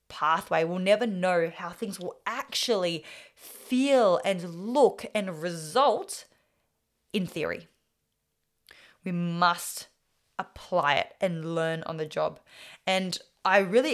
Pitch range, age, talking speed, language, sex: 165-200 Hz, 20-39, 115 wpm, English, female